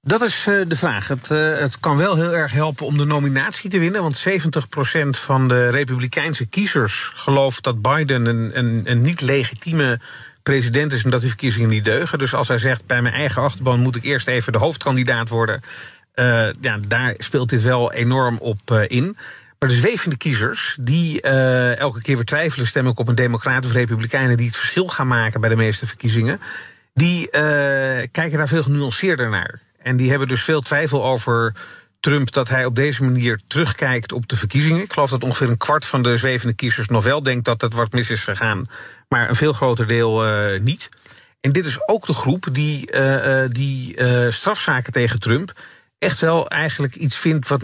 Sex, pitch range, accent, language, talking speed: male, 120-145 Hz, Dutch, Dutch, 195 wpm